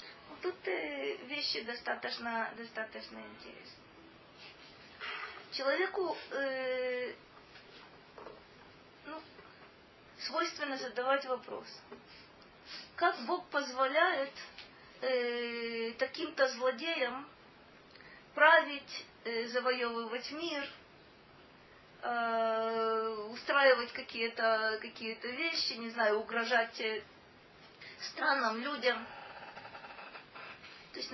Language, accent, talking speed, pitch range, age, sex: Russian, native, 60 wpm, 225-295 Hz, 30-49, female